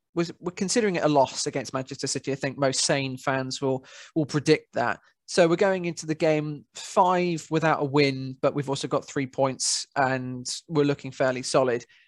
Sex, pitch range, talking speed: male, 135-165 Hz, 190 wpm